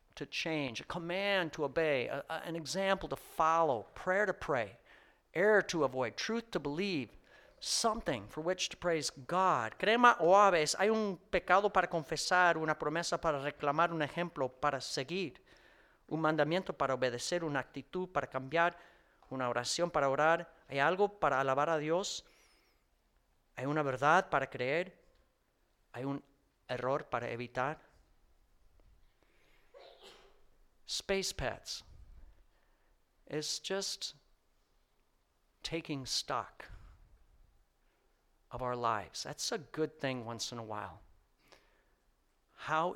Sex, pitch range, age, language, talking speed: male, 120-170 Hz, 40-59, English, 125 wpm